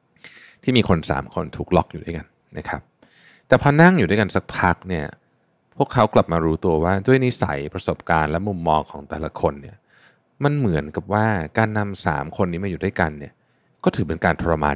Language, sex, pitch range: Thai, male, 85-110 Hz